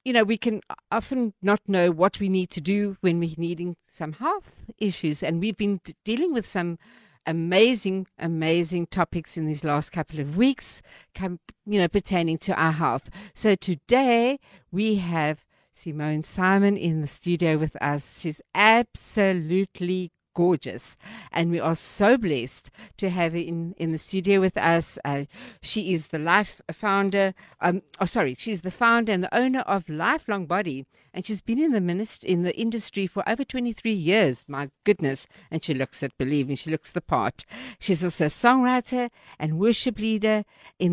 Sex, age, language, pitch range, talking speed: female, 50-69, English, 160-210 Hz, 175 wpm